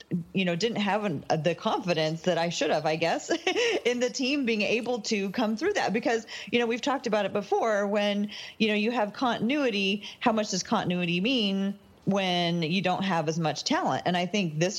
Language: English